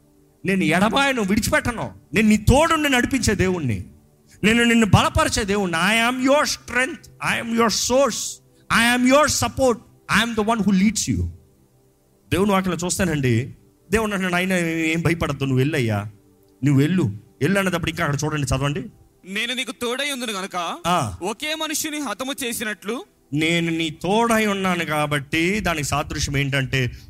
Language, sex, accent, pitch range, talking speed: Telugu, male, native, 130-215 Hz, 115 wpm